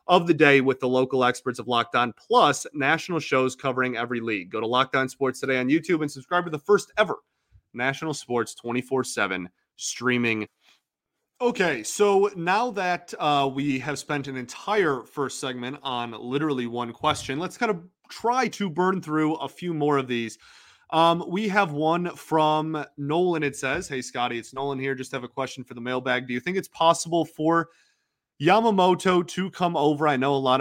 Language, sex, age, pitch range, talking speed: English, male, 30-49, 125-165 Hz, 185 wpm